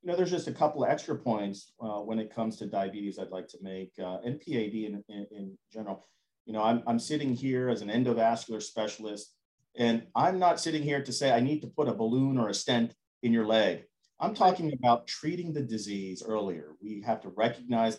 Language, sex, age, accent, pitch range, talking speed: English, male, 40-59, American, 110-135 Hz, 220 wpm